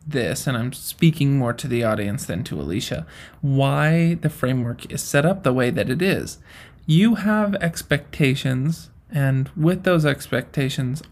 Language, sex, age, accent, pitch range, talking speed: English, male, 20-39, American, 135-155 Hz, 155 wpm